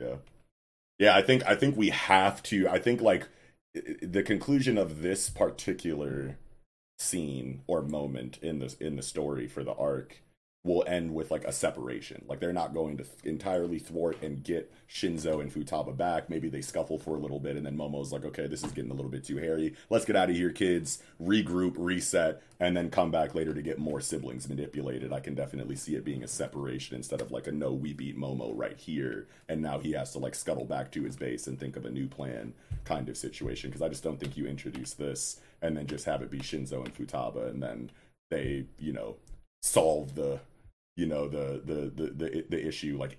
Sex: male